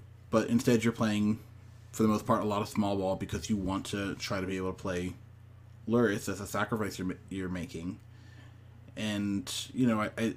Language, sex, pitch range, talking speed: English, male, 95-115 Hz, 195 wpm